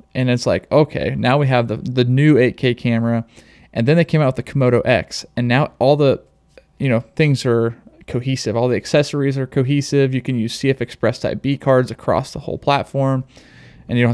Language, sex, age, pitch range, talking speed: English, male, 20-39, 115-140 Hz, 210 wpm